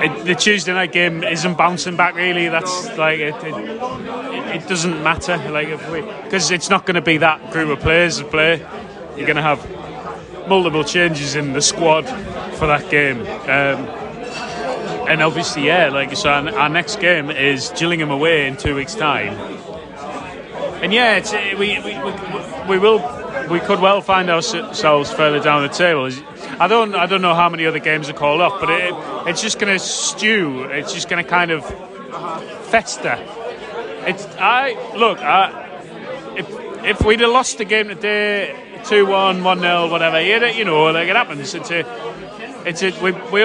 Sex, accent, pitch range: male, British, 155-195 Hz